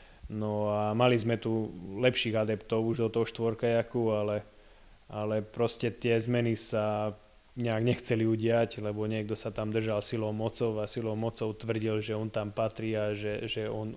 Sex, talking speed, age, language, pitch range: male, 170 wpm, 20-39, Slovak, 105-115 Hz